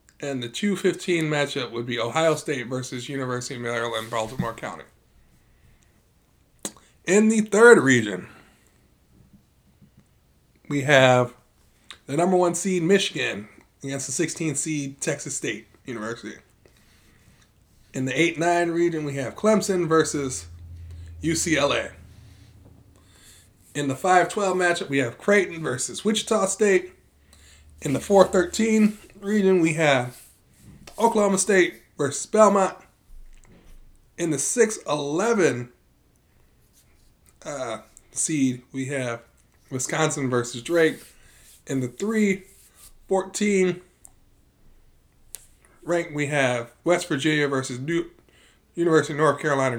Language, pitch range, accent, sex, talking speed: English, 120-180 Hz, American, male, 100 wpm